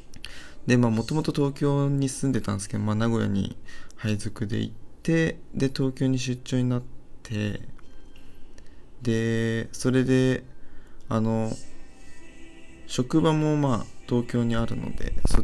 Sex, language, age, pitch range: male, Japanese, 20-39, 100-135 Hz